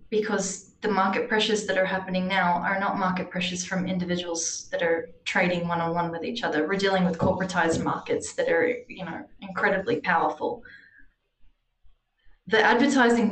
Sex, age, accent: female, 20-39, Australian